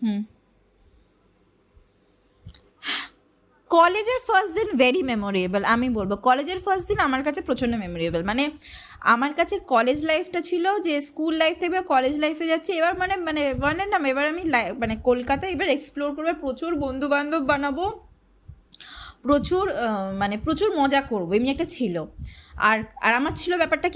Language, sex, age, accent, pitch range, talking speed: Bengali, female, 20-39, native, 230-315 Hz, 75 wpm